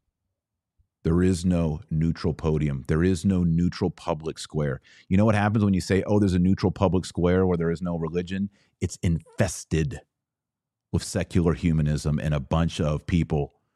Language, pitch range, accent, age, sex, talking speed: English, 75-95 Hz, American, 30-49, male, 170 wpm